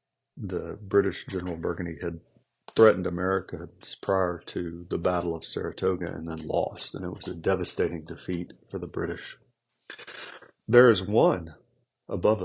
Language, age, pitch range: English, 40-59, 90-110 Hz